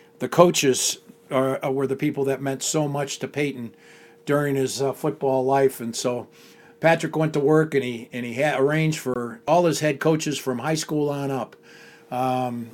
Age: 50-69